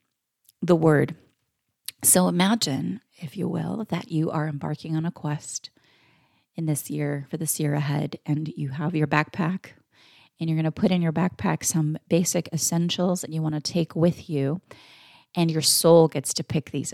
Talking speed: 180 wpm